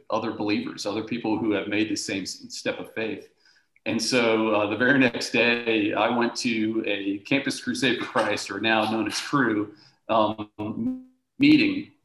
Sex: male